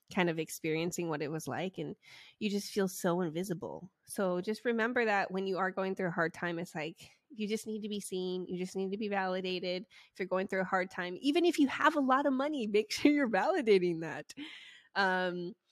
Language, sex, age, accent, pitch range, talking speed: English, female, 20-39, American, 175-220 Hz, 230 wpm